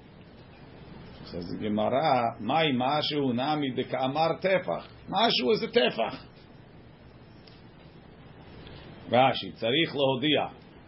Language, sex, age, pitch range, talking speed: English, male, 50-69, 120-160 Hz, 85 wpm